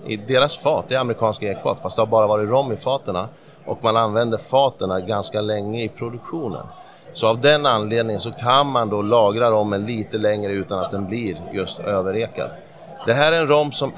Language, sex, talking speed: Swedish, male, 200 wpm